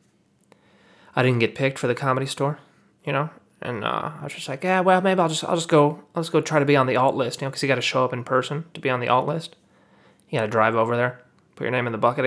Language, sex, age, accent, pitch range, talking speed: English, male, 30-49, American, 125-155 Hz, 290 wpm